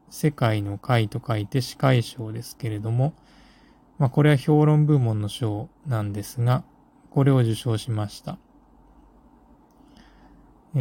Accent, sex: native, male